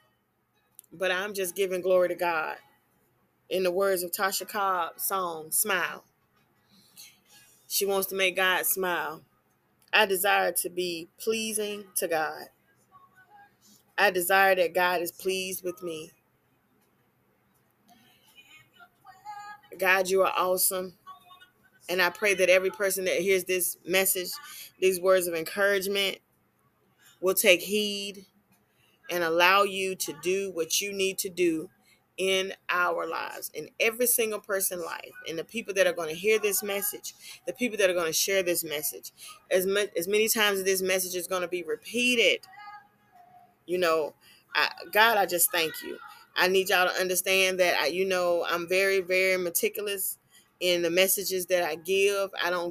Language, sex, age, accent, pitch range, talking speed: English, female, 20-39, American, 180-200 Hz, 155 wpm